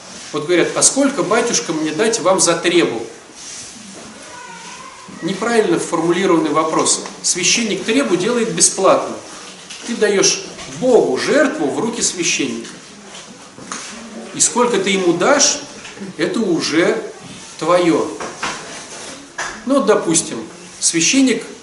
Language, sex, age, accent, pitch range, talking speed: Russian, male, 40-59, native, 180-275 Hz, 95 wpm